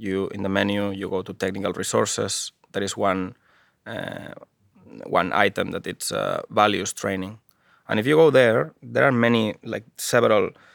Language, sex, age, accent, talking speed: Finnish, male, 20-39, Spanish, 165 wpm